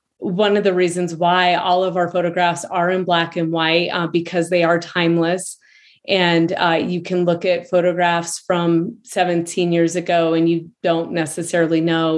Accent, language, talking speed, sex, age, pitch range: American, English, 175 wpm, female, 30-49, 170-190 Hz